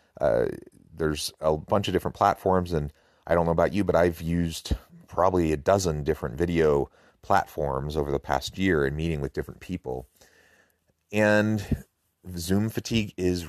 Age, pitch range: 30-49, 75-90 Hz